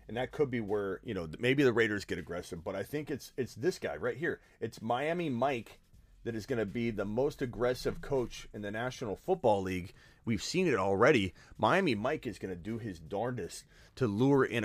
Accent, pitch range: American, 105-145 Hz